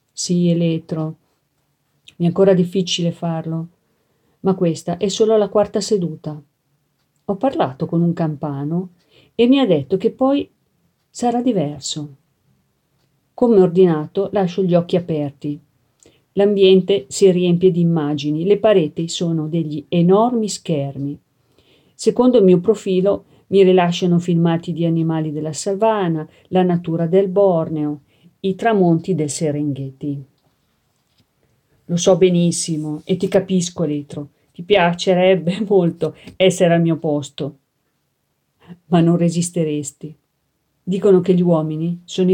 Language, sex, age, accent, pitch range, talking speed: Italian, female, 50-69, native, 155-190 Hz, 120 wpm